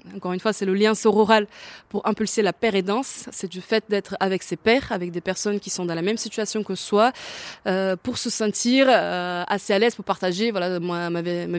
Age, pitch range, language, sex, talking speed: 20-39, 180-215 Hz, French, female, 230 wpm